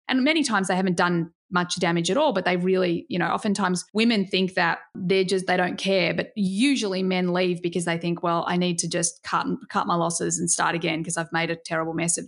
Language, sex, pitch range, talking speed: English, female, 175-225 Hz, 245 wpm